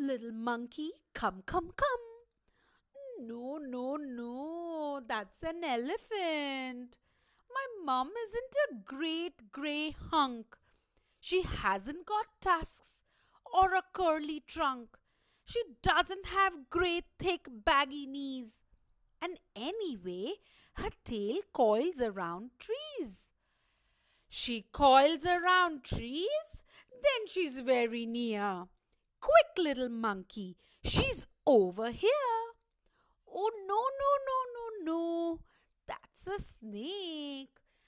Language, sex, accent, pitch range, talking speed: English, female, Indian, 235-365 Hz, 100 wpm